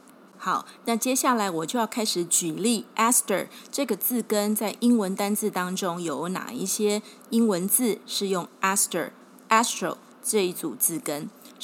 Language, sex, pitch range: Chinese, female, 185-235 Hz